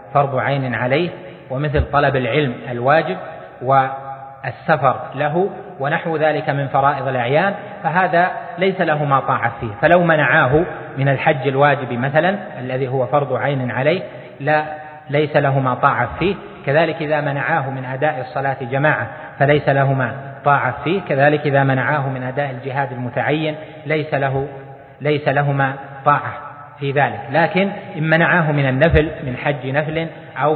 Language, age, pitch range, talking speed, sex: Arabic, 30-49, 135-160 Hz, 130 wpm, male